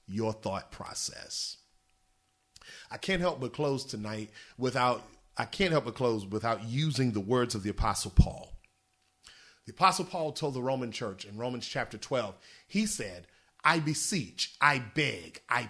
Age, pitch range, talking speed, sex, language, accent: 40-59, 115-160 Hz, 155 wpm, male, English, American